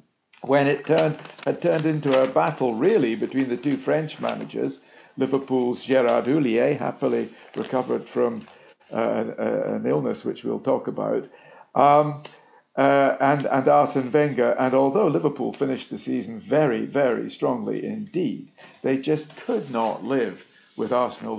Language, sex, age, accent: English, male, 50-69, British